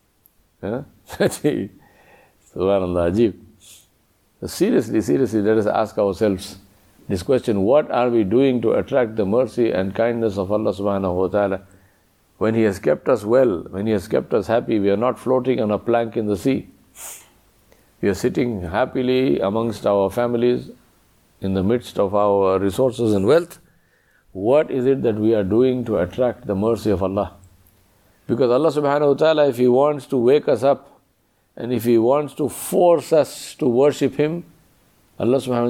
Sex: male